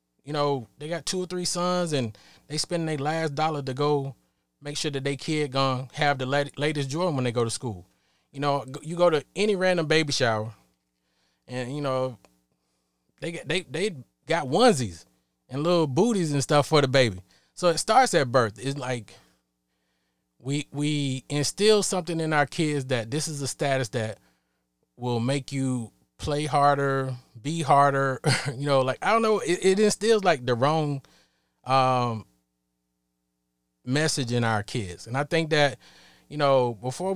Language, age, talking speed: English, 20-39, 175 wpm